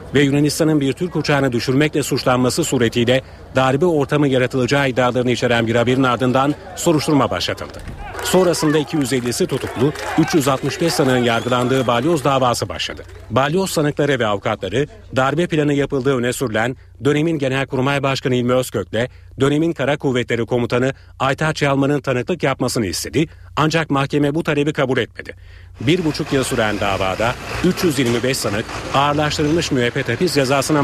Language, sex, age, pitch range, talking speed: Turkish, male, 40-59, 120-150 Hz, 130 wpm